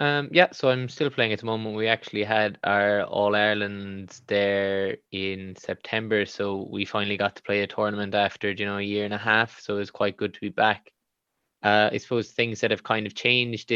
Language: English